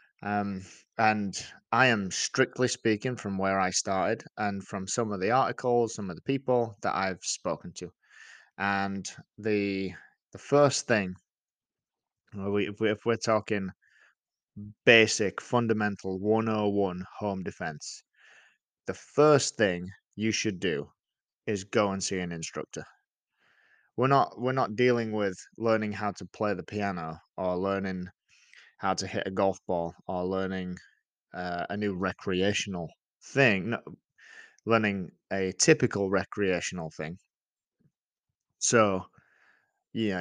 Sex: male